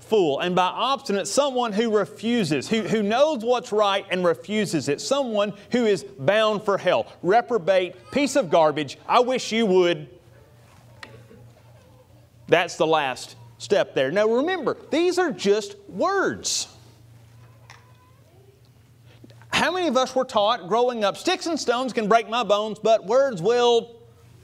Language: English